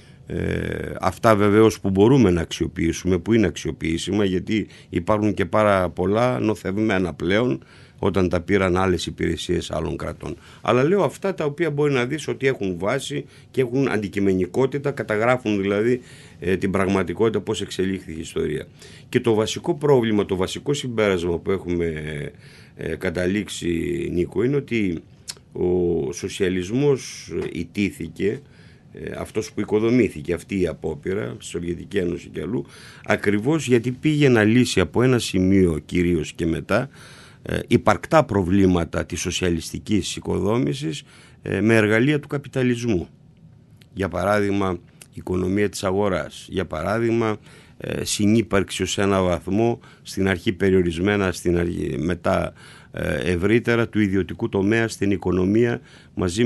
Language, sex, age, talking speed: Greek, male, 50-69, 125 wpm